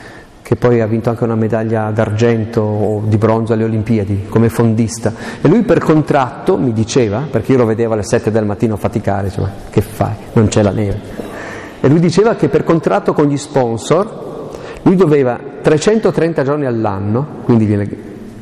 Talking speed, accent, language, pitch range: 175 wpm, native, Italian, 110-135 Hz